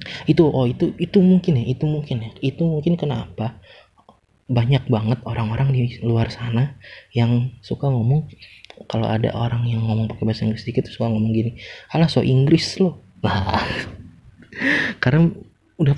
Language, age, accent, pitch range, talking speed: Indonesian, 20-39, native, 110-140 Hz, 145 wpm